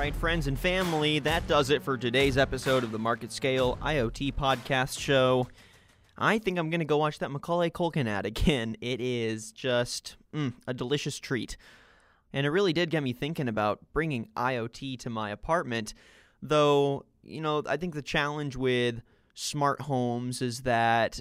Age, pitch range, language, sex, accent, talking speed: 20-39, 120-145 Hz, English, male, American, 175 wpm